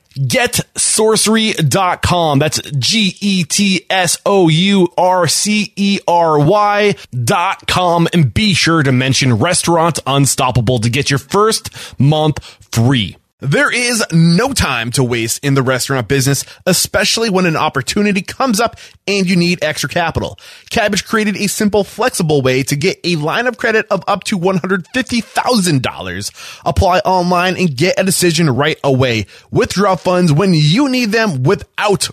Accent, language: American, English